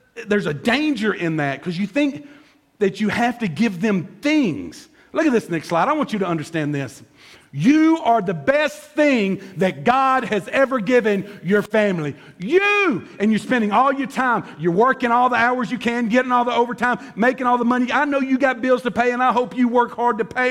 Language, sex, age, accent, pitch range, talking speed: English, male, 50-69, American, 225-300 Hz, 220 wpm